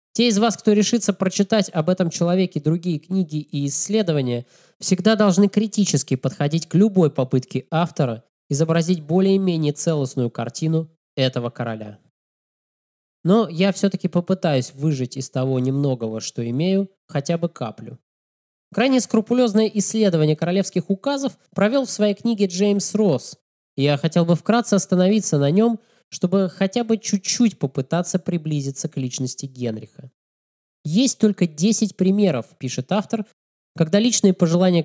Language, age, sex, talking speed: Russian, 20-39, male, 130 wpm